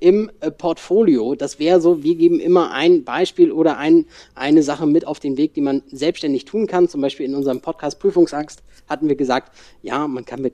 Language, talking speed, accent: German, 205 wpm, German